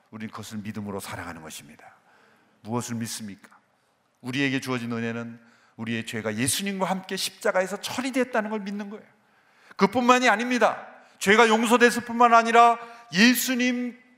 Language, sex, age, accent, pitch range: Korean, male, 40-59, native, 150-235 Hz